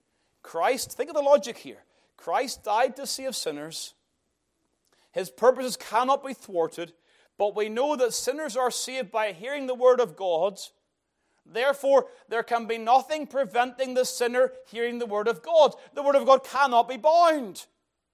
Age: 40-59